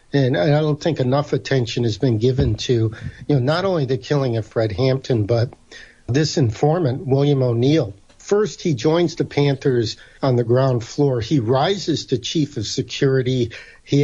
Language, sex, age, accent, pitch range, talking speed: English, male, 50-69, American, 120-145 Hz, 170 wpm